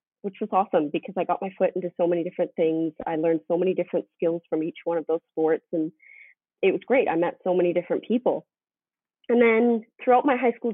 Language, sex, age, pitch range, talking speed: English, female, 30-49, 170-220 Hz, 230 wpm